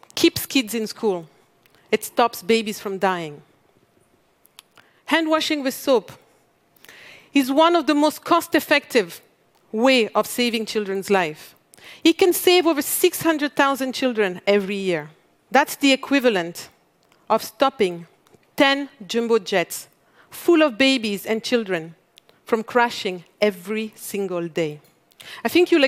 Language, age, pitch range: Japanese, 50-69, 210-305 Hz